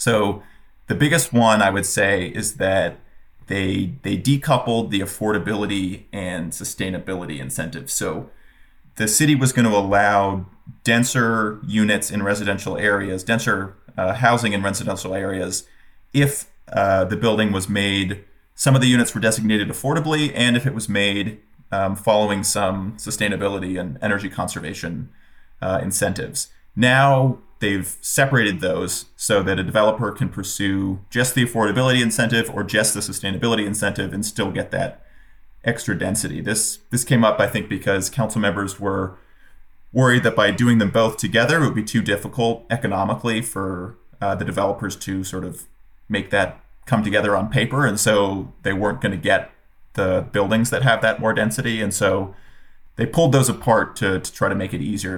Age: 30-49